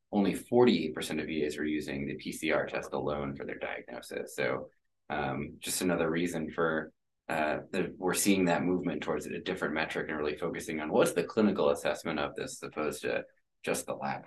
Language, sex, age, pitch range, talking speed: English, male, 20-39, 95-120 Hz, 190 wpm